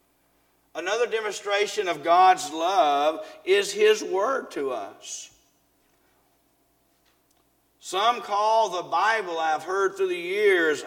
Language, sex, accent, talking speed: English, male, American, 105 wpm